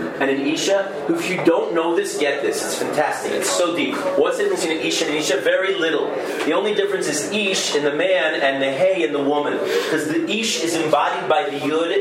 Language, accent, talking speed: English, American, 240 wpm